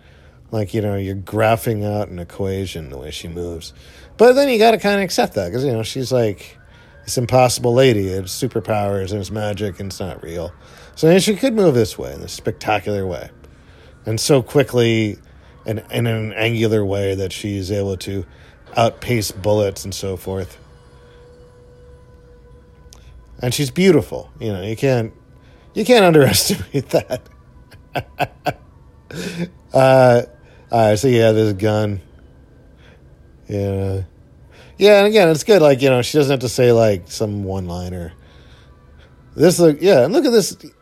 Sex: male